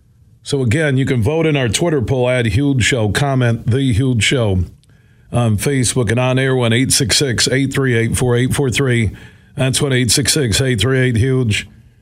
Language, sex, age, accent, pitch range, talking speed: English, male, 50-69, American, 115-145 Hz, 130 wpm